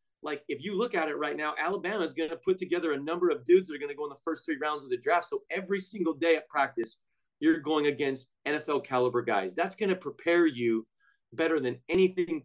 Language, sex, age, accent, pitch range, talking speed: English, male, 30-49, American, 140-175 Hz, 245 wpm